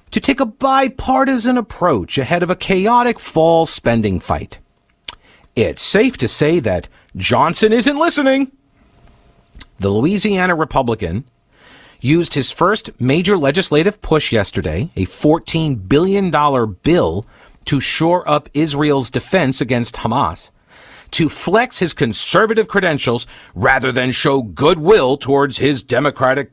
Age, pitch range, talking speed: 50-69, 125-180 Hz, 120 wpm